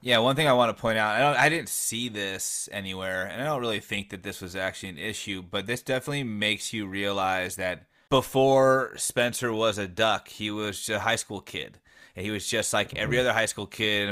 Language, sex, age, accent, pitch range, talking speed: English, male, 30-49, American, 100-120 Hz, 225 wpm